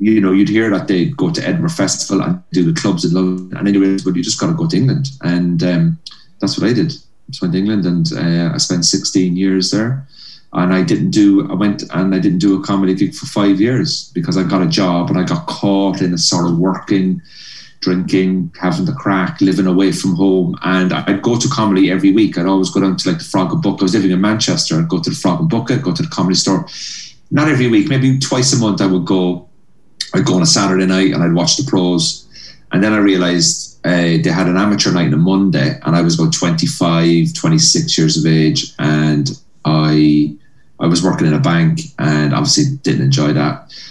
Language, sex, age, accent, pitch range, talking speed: English, male, 30-49, British, 85-105 Hz, 235 wpm